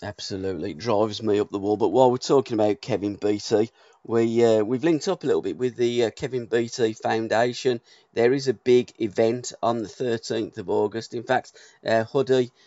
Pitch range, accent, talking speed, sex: 105-125 Hz, British, 205 wpm, male